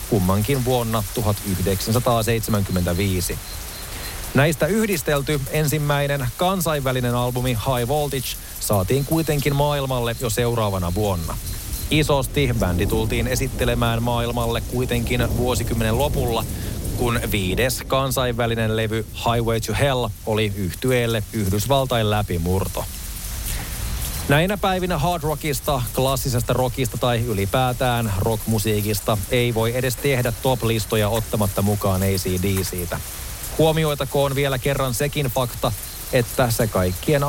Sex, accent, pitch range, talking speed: male, native, 105-130 Hz, 100 wpm